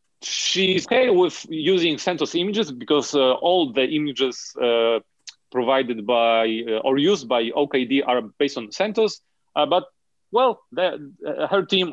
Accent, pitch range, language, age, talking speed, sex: Polish, 130-190 Hz, English, 40-59, 145 wpm, male